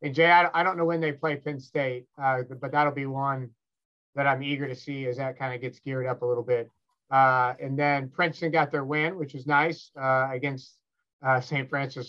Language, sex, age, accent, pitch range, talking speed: English, male, 30-49, American, 130-150 Hz, 225 wpm